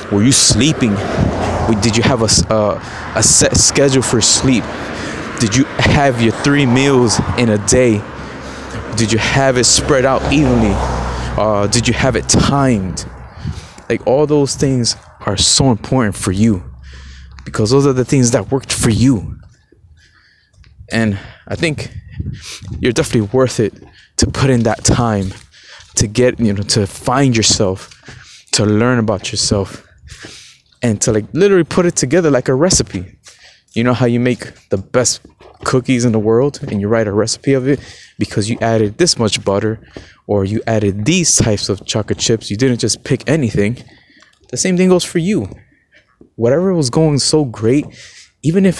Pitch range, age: 105-130 Hz, 20-39